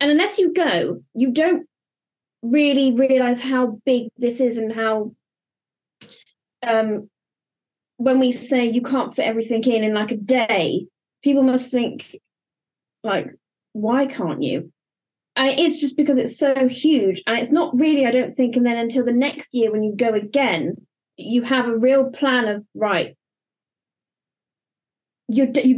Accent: British